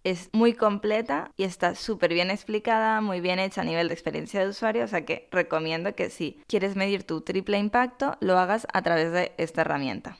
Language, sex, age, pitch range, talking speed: Spanish, female, 10-29, 170-205 Hz, 205 wpm